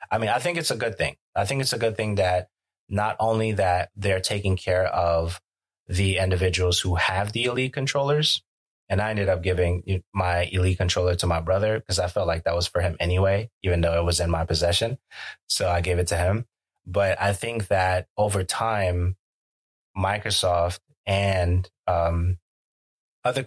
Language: English